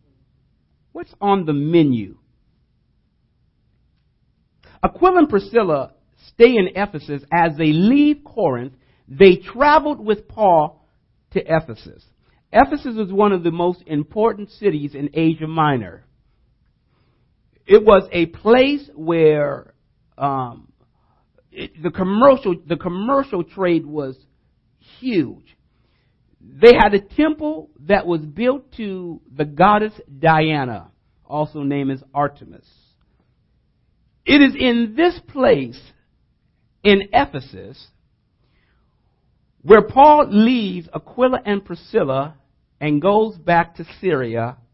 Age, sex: 50-69, male